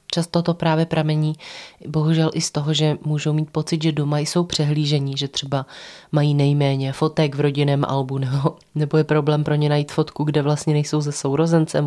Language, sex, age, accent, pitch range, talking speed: Czech, female, 30-49, native, 140-155 Hz, 180 wpm